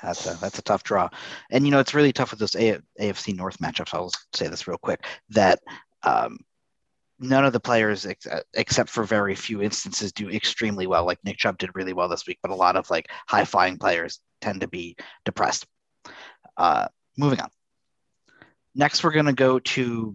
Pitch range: 105-130 Hz